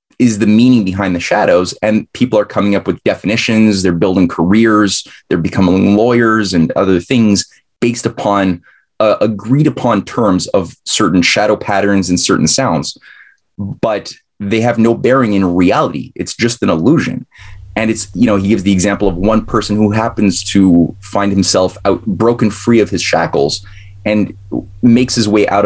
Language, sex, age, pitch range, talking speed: English, male, 20-39, 95-110 Hz, 170 wpm